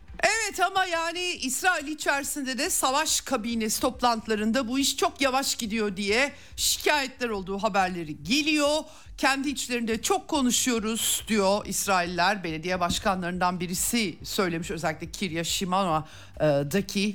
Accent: native